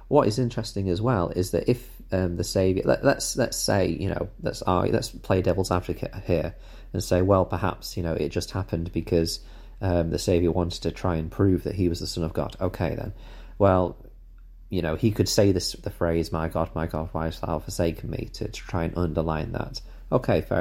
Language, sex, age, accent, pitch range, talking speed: English, male, 30-49, British, 85-105 Hz, 225 wpm